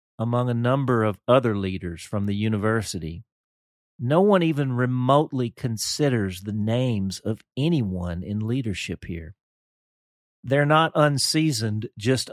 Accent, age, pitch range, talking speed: American, 40-59, 105-145 Hz, 120 wpm